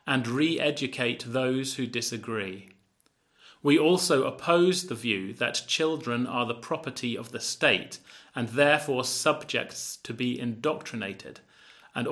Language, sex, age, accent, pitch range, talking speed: German, male, 30-49, British, 120-155 Hz, 125 wpm